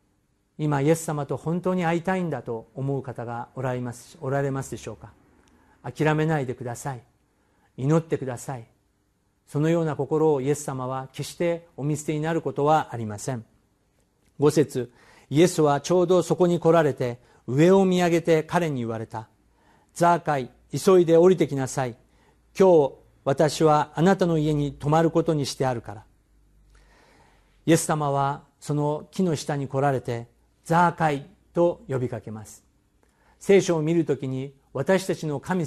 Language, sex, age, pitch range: Japanese, male, 50-69, 120-160 Hz